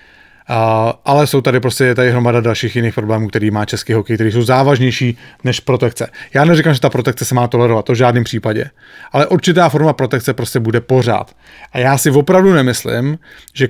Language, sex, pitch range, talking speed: English, male, 125-155 Hz, 190 wpm